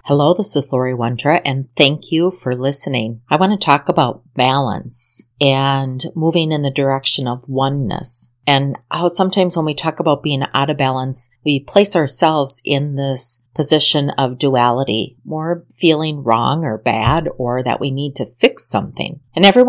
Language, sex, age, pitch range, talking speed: English, female, 40-59, 130-165 Hz, 170 wpm